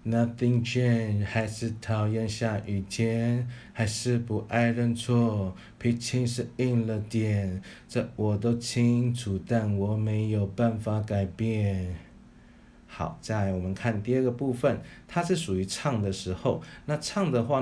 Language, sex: Chinese, male